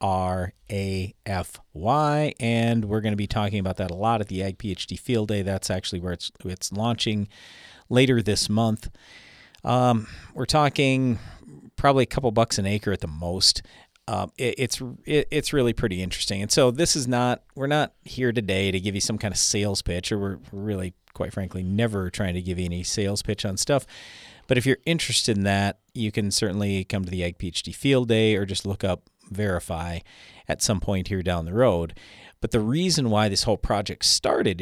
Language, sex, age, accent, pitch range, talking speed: English, male, 40-59, American, 95-130 Hz, 200 wpm